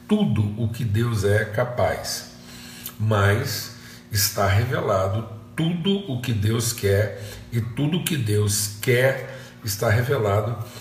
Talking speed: 120 wpm